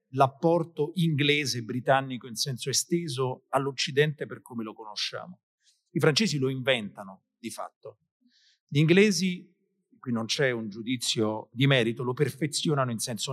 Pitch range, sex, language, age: 130-175 Hz, male, Italian, 40-59